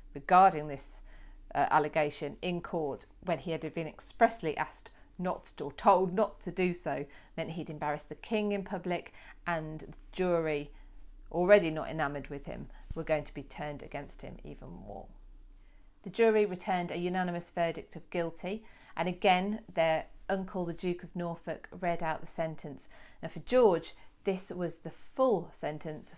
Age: 40-59